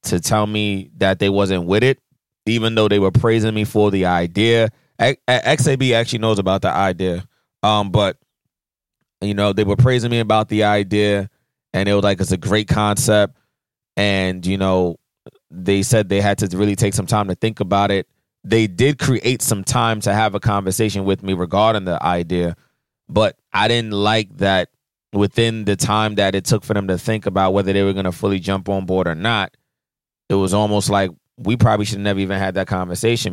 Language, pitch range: English, 100-120 Hz